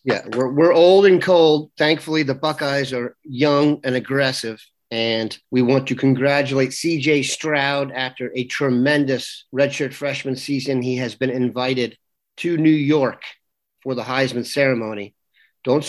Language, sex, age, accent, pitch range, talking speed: English, male, 40-59, American, 125-150 Hz, 145 wpm